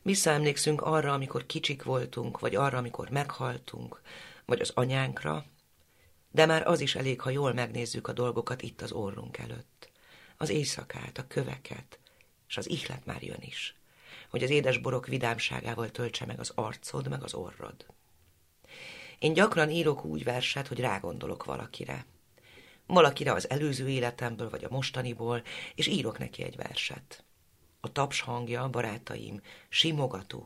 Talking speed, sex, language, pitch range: 140 wpm, female, Hungarian, 115-140 Hz